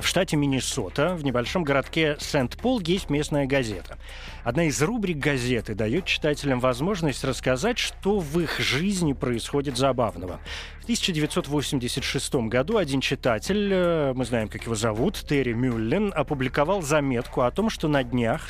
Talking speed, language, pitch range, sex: 140 wpm, Russian, 125-175 Hz, male